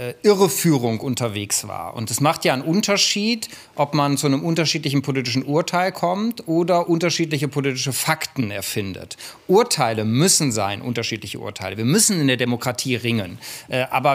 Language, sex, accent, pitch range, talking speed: German, male, German, 130-170 Hz, 145 wpm